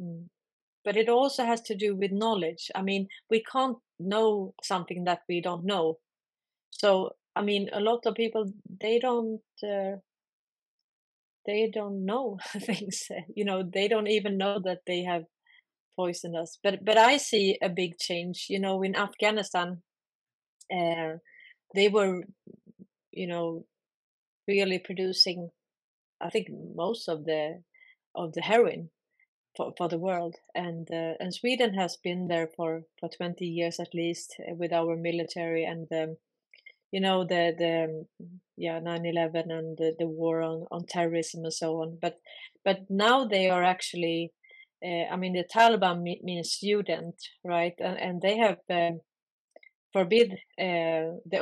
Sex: female